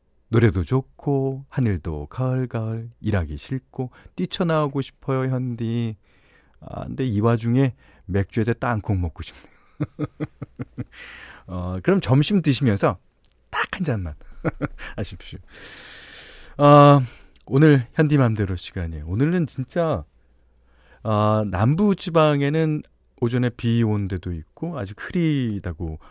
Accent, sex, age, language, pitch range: native, male, 40-59, Korean, 85-135 Hz